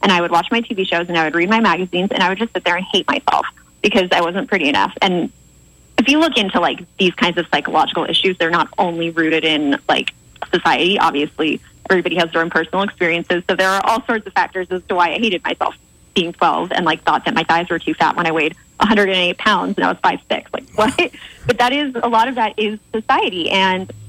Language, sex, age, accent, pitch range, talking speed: English, female, 20-39, American, 170-210 Hz, 245 wpm